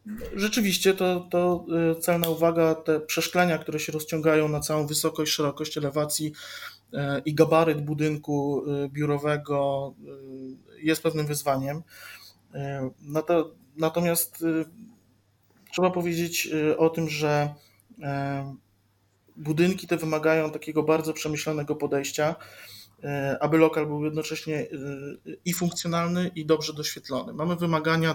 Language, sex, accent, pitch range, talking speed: Polish, male, native, 140-160 Hz, 100 wpm